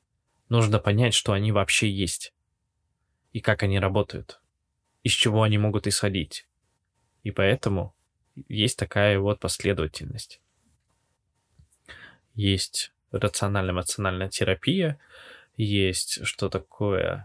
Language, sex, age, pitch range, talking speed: Russian, male, 20-39, 100-125 Hz, 95 wpm